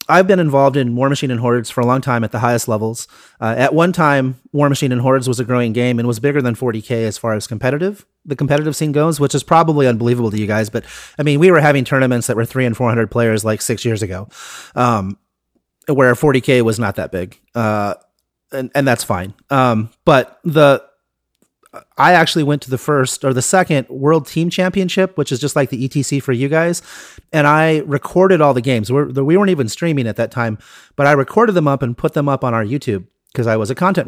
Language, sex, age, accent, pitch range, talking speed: English, male, 30-49, American, 120-155 Hz, 230 wpm